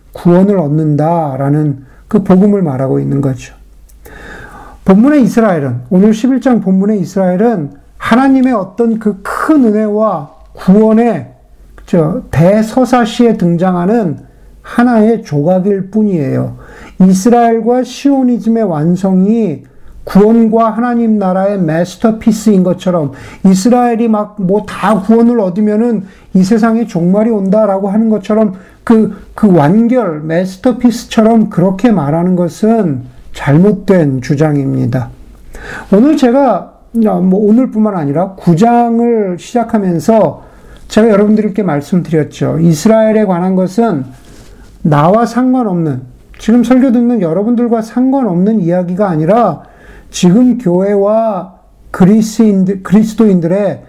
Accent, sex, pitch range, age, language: native, male, 170-225 Hz, 50-69, Korean